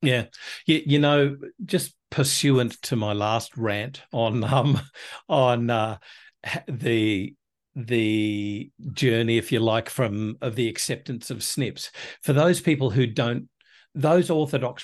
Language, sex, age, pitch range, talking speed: English, male, 50-69, 120-150 Hz, 135 wpm